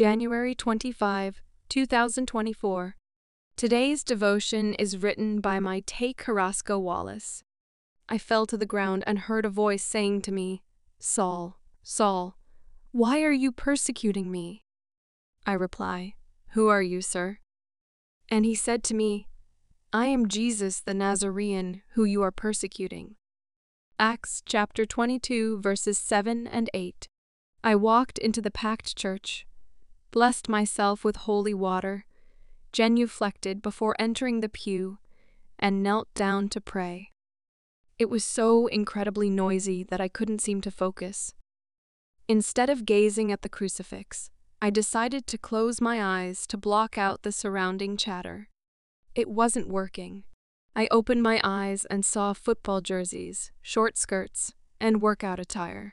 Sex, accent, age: female, American, 20-39